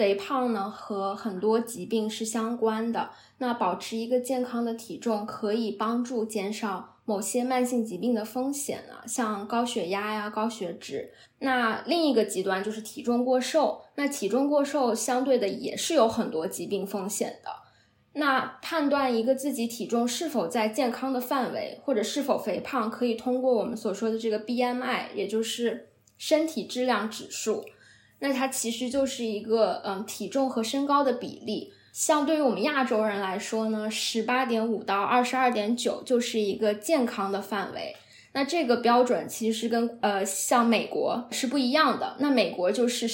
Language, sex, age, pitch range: Chinese, female, 10-29, 215-260 Hz